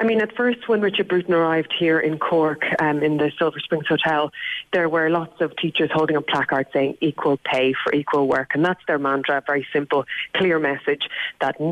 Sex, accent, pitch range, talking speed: female, Irish, 145-180 Hz, 210 wpm